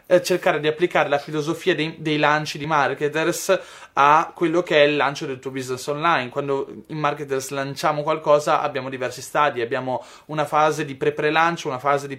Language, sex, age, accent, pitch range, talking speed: Italian, male, 20-39, native, 145-165 Hz, 175 wpm